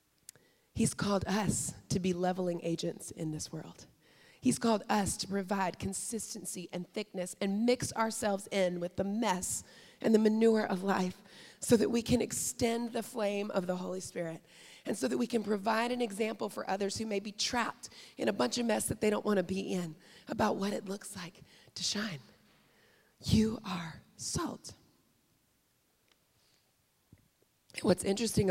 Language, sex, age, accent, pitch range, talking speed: English, female, 30-49, American, 170-210 Hz, 165 wpm